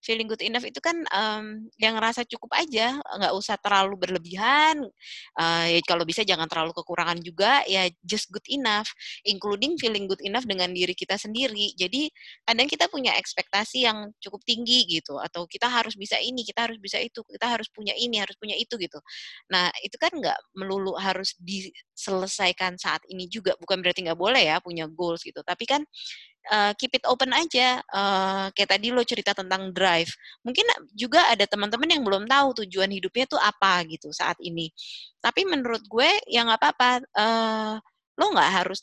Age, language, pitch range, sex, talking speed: 20-39, Indonesian, 185-235 Hz, female, 180 wpm